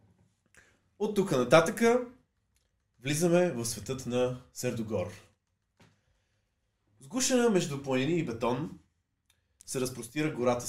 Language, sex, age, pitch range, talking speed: Bulgarian, male, 20-39, 105-130 Hz, 90 wpm